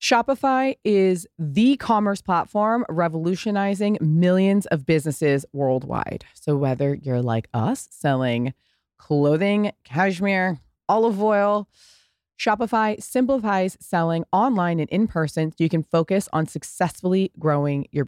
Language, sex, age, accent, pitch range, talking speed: English, female, 20-39, American, 155-215 Hz, 115 wpm